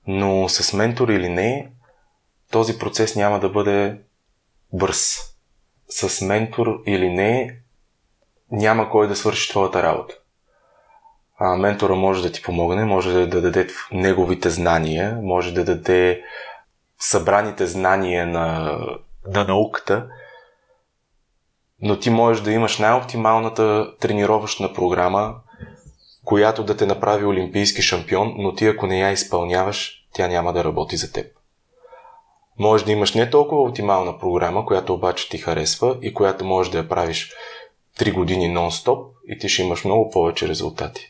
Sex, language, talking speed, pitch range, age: male, Bulgarian, 135 wpm, 90-110 Hz, 20-39